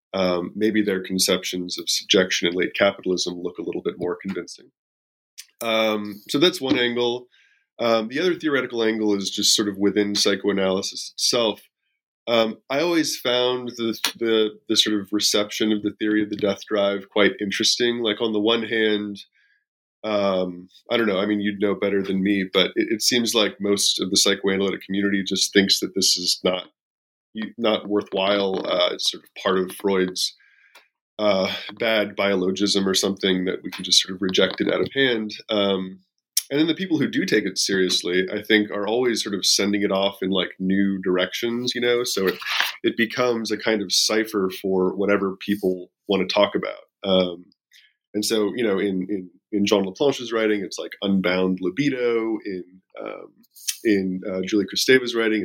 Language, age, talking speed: English, 20-39, 185 wpm